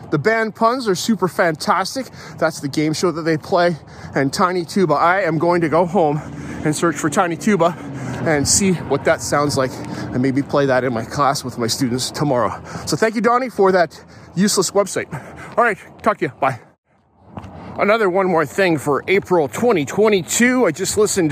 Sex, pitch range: male, 140-195 Hz